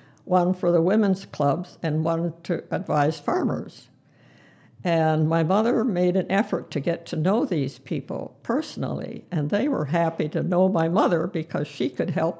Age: 60-79